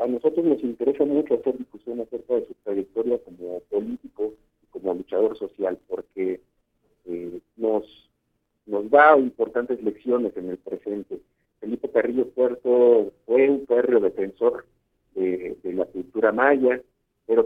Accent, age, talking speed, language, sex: Mexican, 50-69, 140 wpm, Spanish, male